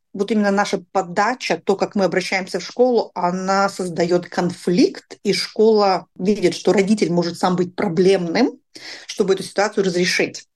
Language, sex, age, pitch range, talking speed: Russian, female, 30-49, 180-220 Hz, 150 wpm